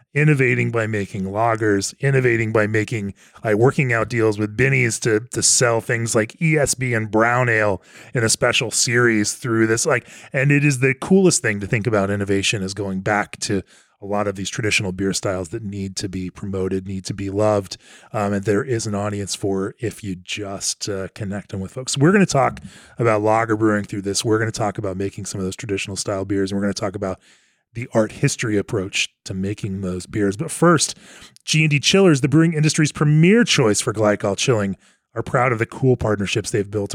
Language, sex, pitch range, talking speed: English, male, 100-140 Hz, 210 wpm